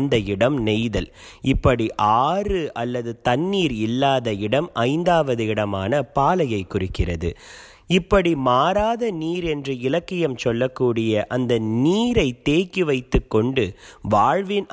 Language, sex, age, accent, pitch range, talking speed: Tamil, male, 30-49, native, 115-175 Hz, 95 wpm